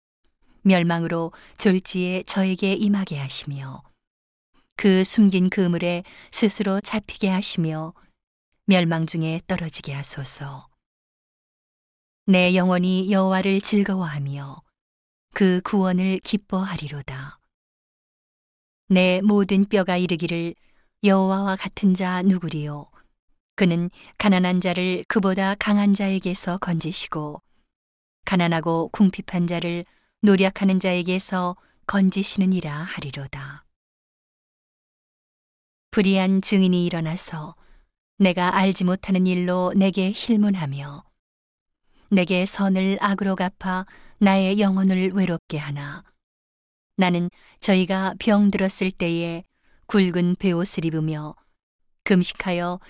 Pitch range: 165-195 Hz